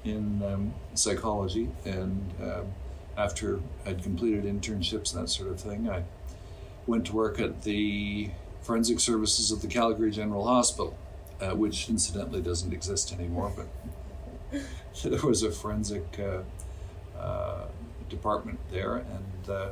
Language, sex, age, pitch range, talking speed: English, male, 50-69, 85-105 Hz, 135 wpm